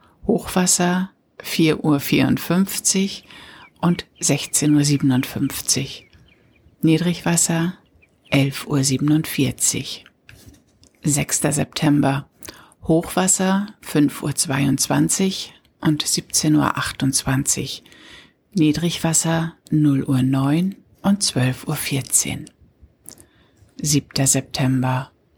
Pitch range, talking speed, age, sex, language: 135-165 Hz, 60 wpm, 60-79, female, German